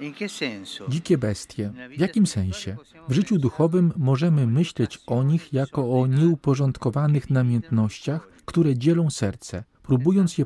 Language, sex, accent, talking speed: Polish, male, native, 120 wpm